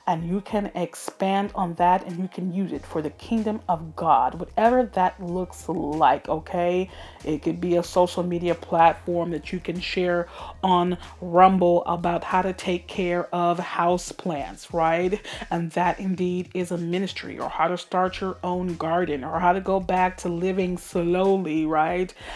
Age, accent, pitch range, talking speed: 30-49, American, 175-195 Hz, 170 wpm